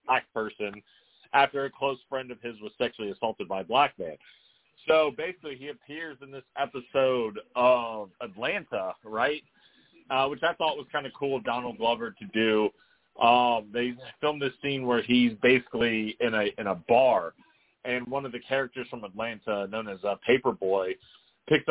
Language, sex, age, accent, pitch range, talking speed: English, male, 30-49, American, 110-135 Hz, 175 wpm